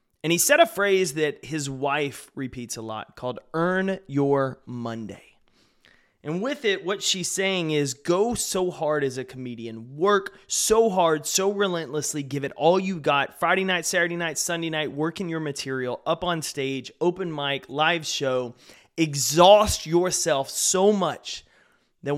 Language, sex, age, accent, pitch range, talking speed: English, male, 30-49, American, 135-170 Hz, 160 wpm